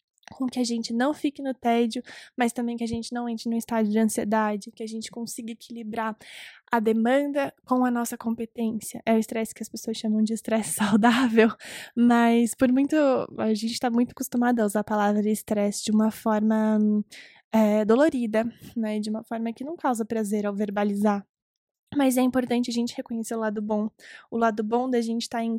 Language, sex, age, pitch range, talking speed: Portuguese, female, 10-29, 220-245 Hz, 200 wpm